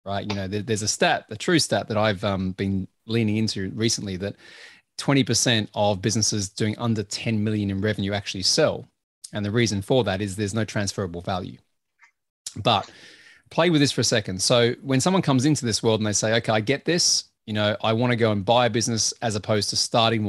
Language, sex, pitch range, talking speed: English, male, 105-125 Hz, 215 wpm